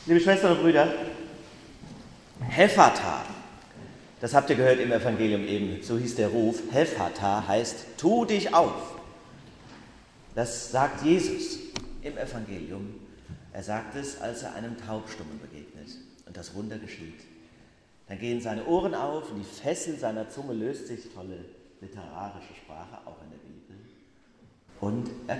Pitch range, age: 100-125 Hz, 40-59